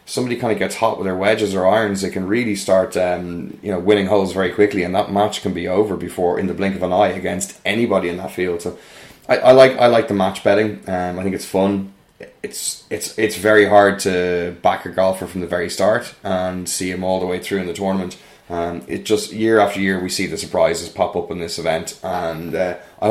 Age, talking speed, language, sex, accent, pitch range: 20-39, 245 wpm, English, male, Irish, 90-105 Hz